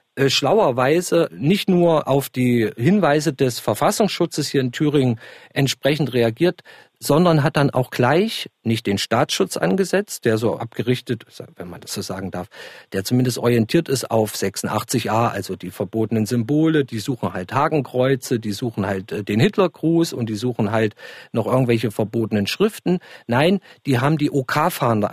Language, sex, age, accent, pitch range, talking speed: German, male, 50-69, German, 125-170 Hz, 150 wpm